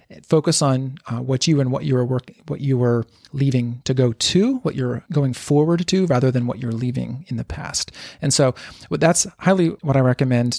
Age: 30-49